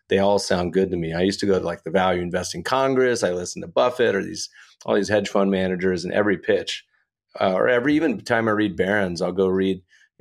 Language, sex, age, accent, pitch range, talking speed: English, male, 30-49, American, 90-100 Hz, 245 wpm